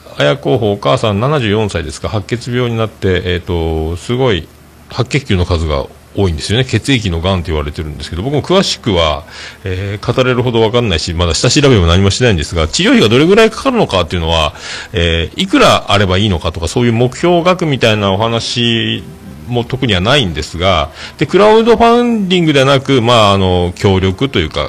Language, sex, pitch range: Japanese, male, 85-120 Hz